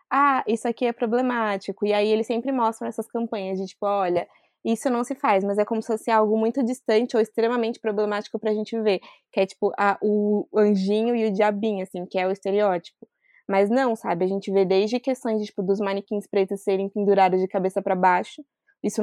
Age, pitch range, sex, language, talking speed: 20-39, 200-240 Hz, female, Portuguese, 200 wpm